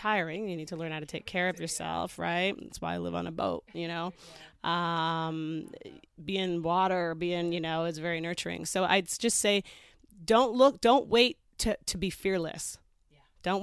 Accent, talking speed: American, 195 wpm